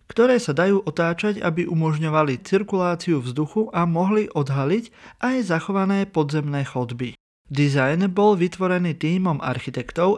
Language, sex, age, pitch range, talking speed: Slovak, male, 30-49, 140-190 Hz, 120 wpm